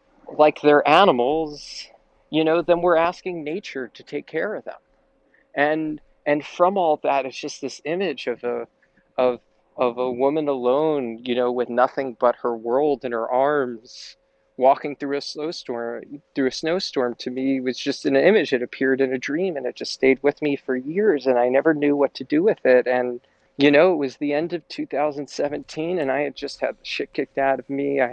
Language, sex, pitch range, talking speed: English, male, 125-150 Hz, 205 wpm